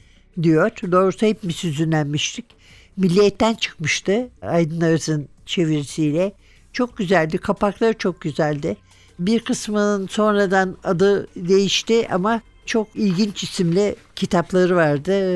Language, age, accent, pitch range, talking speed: Turkish, 60-79, native, 160-200 Hz, 100 wpm